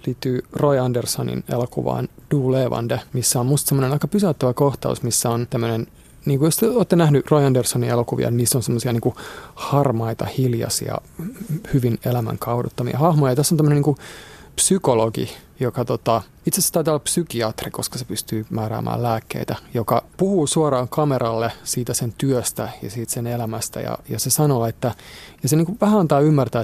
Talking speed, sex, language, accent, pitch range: 160 wpm, male, Finnish, native, 120-155 Hz